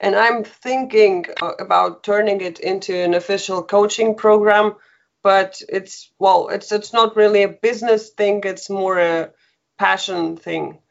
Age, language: 20-39, English